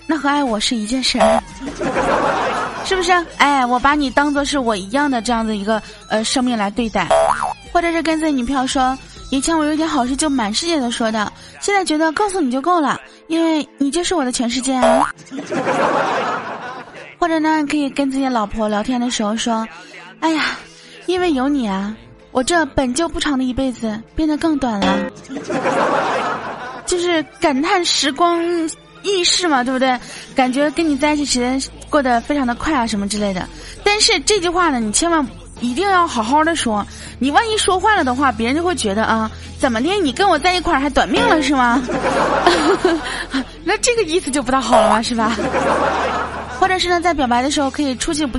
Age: 20-39